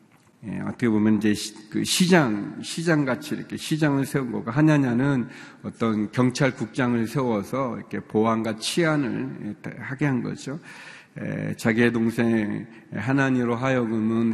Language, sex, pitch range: Korean, male, 105-135 Hz